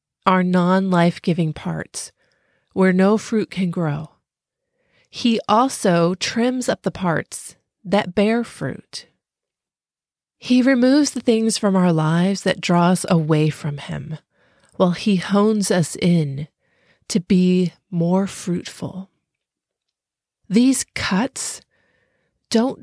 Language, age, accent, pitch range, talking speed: English, 30-49, American, 170-215 Hz, 110 wpm